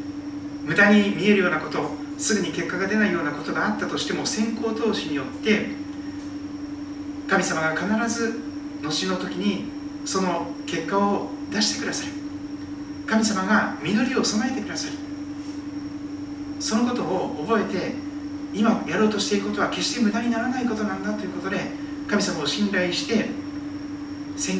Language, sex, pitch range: Japanese, male, 230-290 Hz